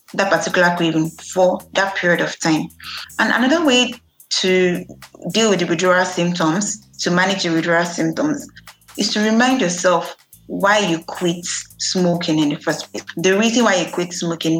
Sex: female